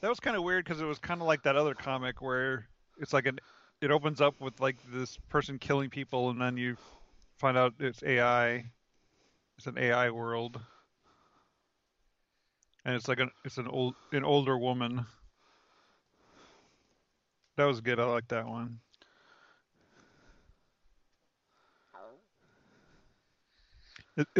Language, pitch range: English, 120-145 Hz